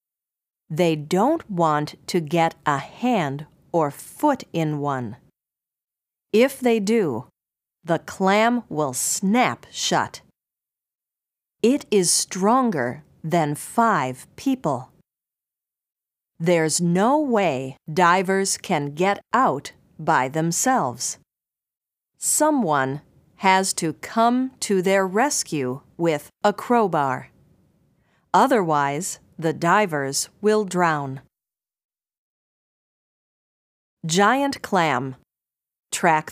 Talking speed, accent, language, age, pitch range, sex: 85 wpm, American, English, 40-59, 150-220 Hz, female